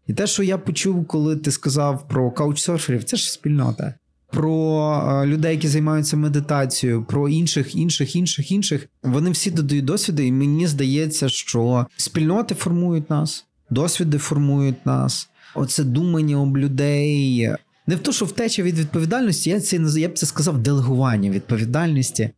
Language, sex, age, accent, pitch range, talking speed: Ukrainian, male, 30-49, native, 125-160 Hz, 150 wpm